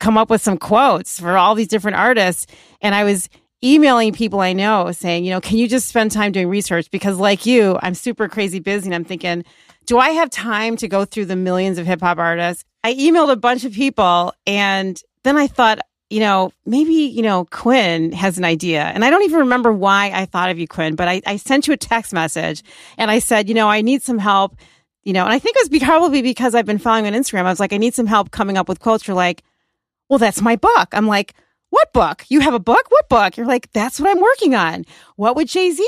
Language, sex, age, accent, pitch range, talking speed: English, female, 40-59, American, 180-230 Hz, 250 wpm